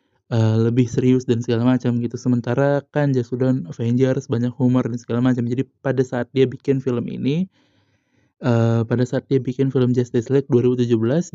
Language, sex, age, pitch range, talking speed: Indonesian, male, 20-39, 120-140 Hz, 175 wpm